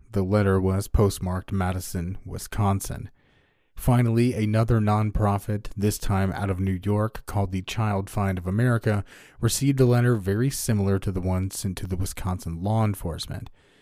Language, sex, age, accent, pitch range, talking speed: English, male, 30-49, American, 95-115 Hz, 150 wpm